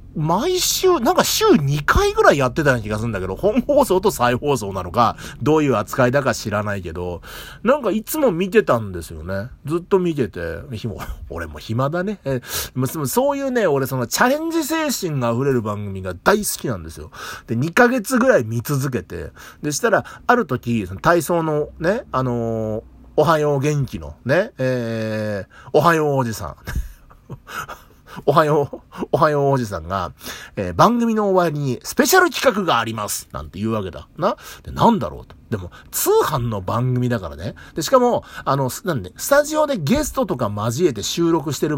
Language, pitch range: Japanese, 110-180 Hz